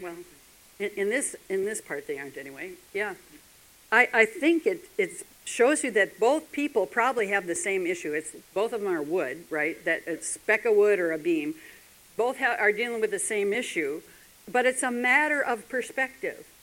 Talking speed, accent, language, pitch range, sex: 200 wpm, American, English, 195-300 Hz, female